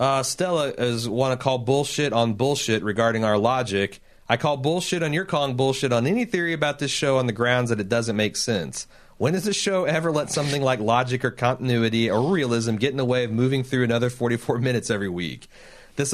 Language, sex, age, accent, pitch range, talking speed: English, male, 30-49, American, 115-165 Hz, 220 wpm